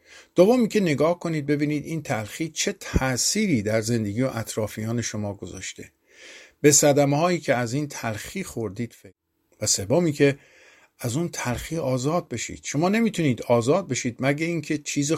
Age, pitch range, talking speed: 50-69, 110-145 Hz, 155 wpm